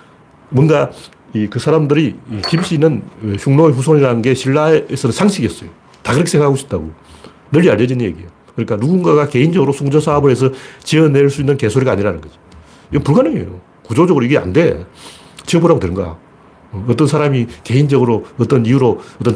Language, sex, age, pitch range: Korean, male, 40-59, 105-150 Hz